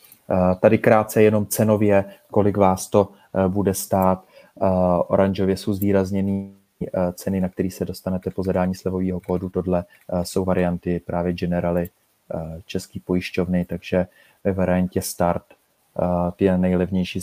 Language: Czech